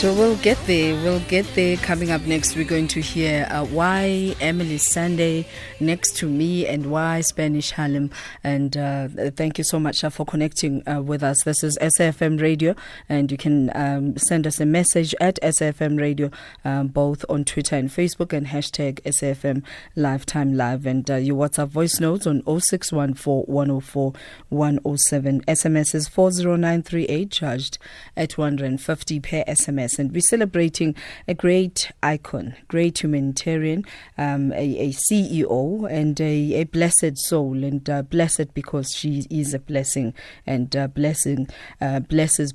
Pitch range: 140-165 Hz